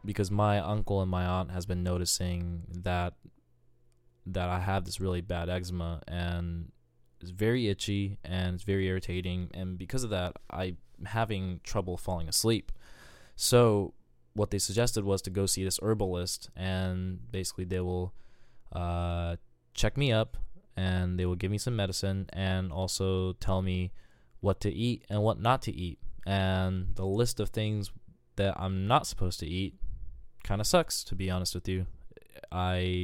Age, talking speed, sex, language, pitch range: 20-39, 165 wpm, male, English, 90-105 Hz